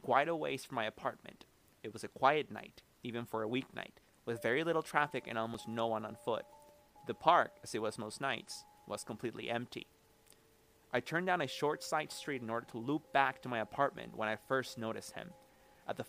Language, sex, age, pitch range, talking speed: English, male, 30-49, 115-145 Hz, 215 wpm